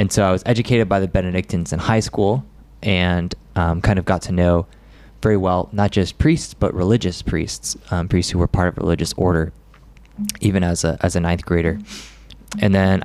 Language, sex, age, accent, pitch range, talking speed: English, male, 20-39, American, 90-110 Hz, 200 wpm